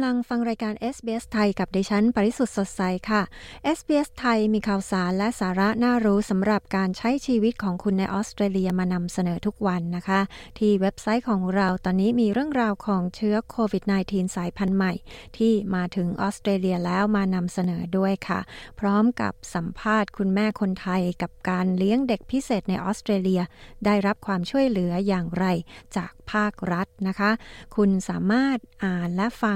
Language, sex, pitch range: Thai, female, 185-215 Hz